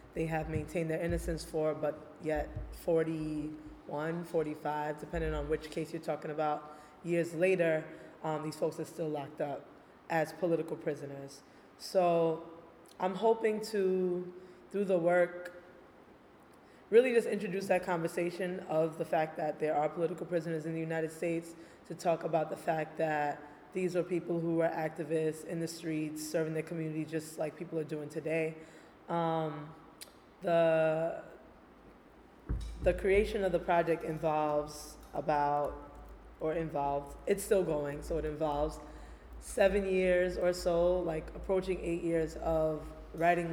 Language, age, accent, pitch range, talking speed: English, 20-39, American, 155-170 Hz, 140 wpm